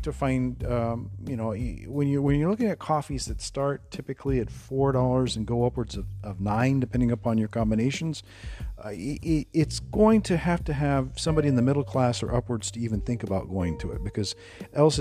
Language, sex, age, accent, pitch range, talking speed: English, male, 40-59, American, 100-135 Hz, 205 wpm